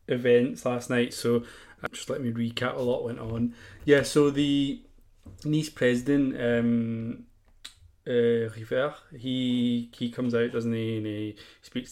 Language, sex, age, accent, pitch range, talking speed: English, male, 20-39, British, 105-125 Hz, 145 wpm